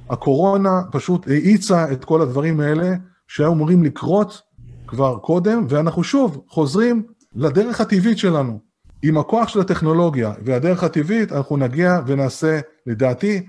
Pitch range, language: 140-185 Hz, Hebrew